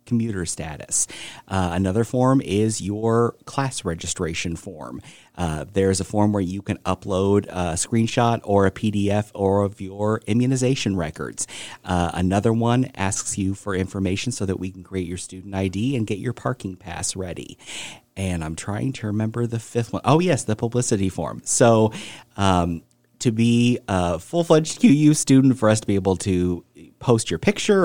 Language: English